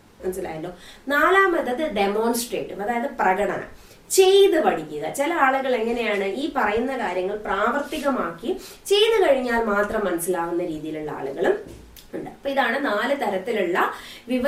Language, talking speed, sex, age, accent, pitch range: English, 105 wpm, female, 20-39, Indian, 205-315 Hz